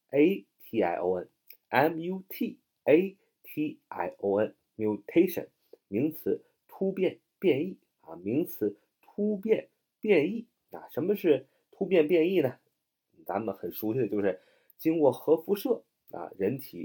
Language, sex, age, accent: Chinese, male, 30-49, native